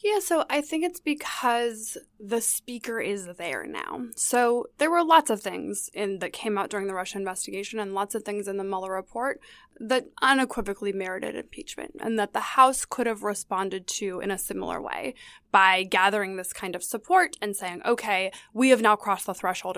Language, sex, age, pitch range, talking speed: English, female, 20-39, 205-285 Hz, 190 wpm